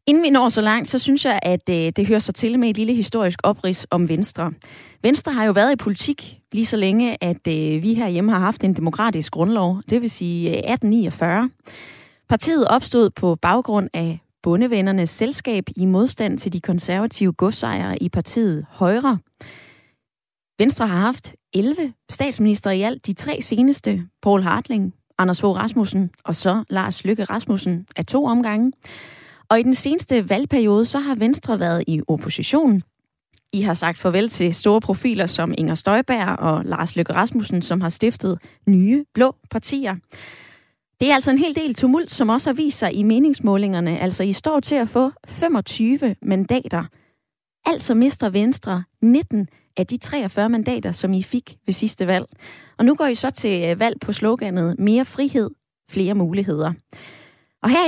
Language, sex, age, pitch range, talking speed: Danish, female, 20-39, 180-245 Hz, 170 wpm